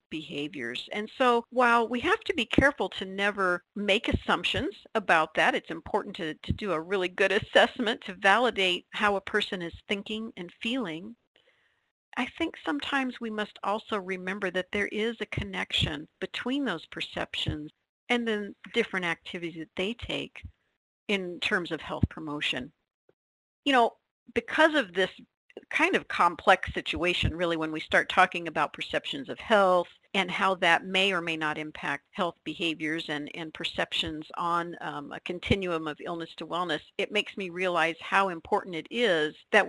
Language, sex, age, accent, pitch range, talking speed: English, female, 50-69, American, 165-225 Hz, 165 wpm